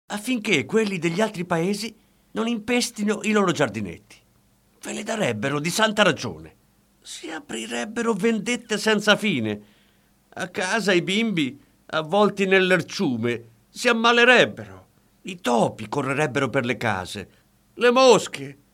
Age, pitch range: 50-69, 155-240 Hz